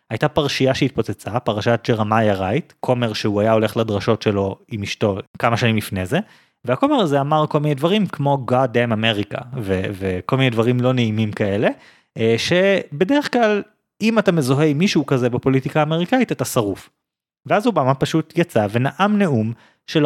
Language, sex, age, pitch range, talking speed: Hebrew, male, 30-49, 120-165 Hz, 160 wpm